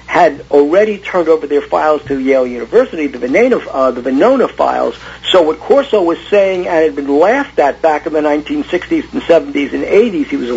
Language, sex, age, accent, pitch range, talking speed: English, male, 50-69, American, 140-180 Hz, 200 wpm